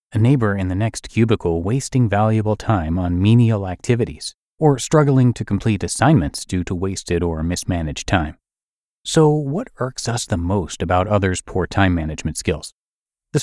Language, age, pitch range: English, 30-49, 90-120 Hz